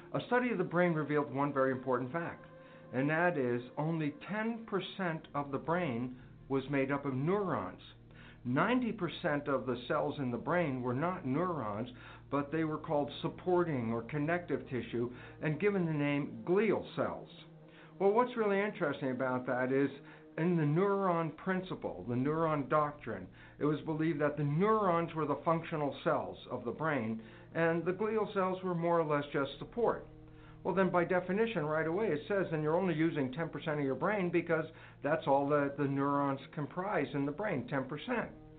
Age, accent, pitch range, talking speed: 60-79, American, 135-175 Hz, 170 wpm